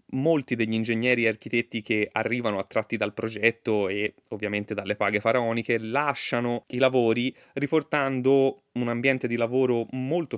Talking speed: 140 wpm